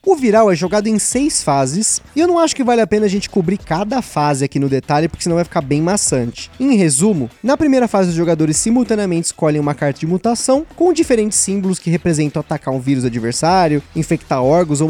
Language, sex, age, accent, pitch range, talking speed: Portuguese, male, 20-39, Brazilian, 150-225 Hz, 220 wpm